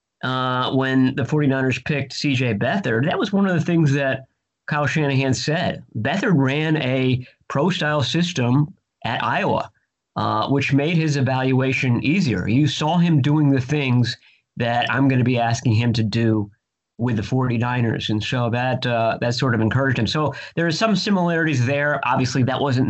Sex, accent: male, American